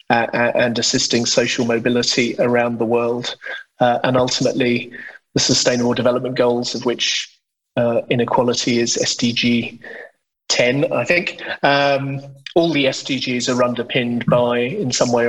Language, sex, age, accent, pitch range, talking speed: English, male, 30-49, British, 120-135 Hz, 130 wpm